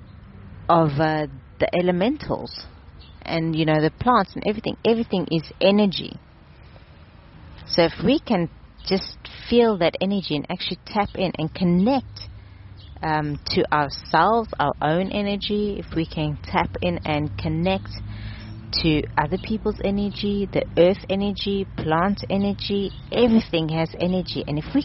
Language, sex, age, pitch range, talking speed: English, female, 30-49, 110-175 Hz, 135 wpm